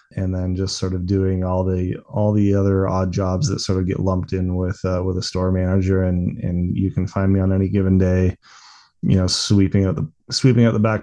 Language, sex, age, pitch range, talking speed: English, male, 20-39, 90-105 Hz, 240 wpm